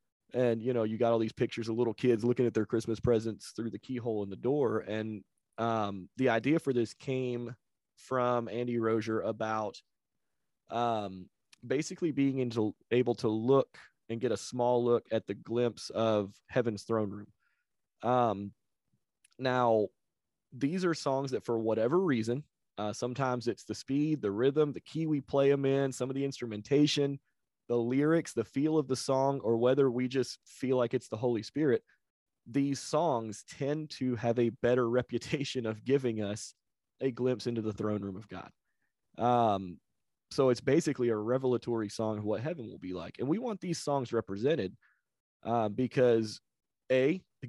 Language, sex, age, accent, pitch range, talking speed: English, male, 30-49, American, 110-135 Hz, 170 wpm